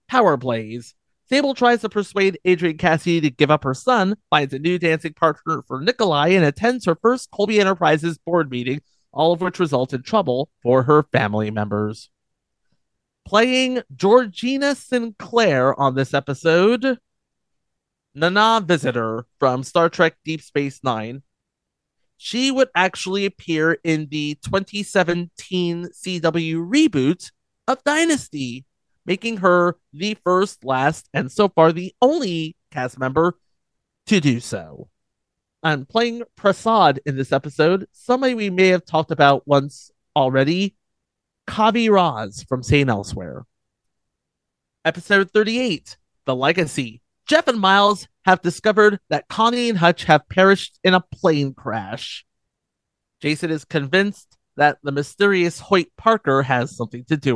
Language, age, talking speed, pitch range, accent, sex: English, 30-49, 135 wpm, 135-200 Hz, American, male